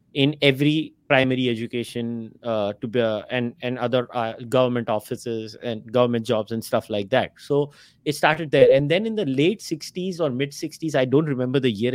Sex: male